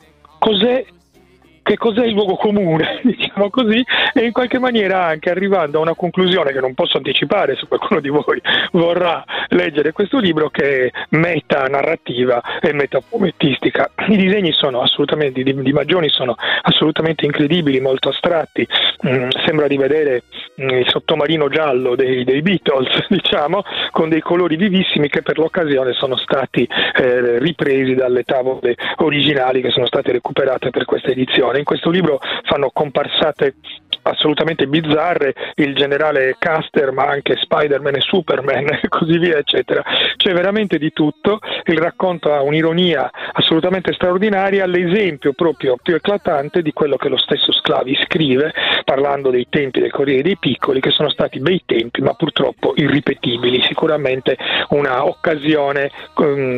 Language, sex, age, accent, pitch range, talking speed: Italian, male, 40-59, native, 140-180 Hz, 145 wpm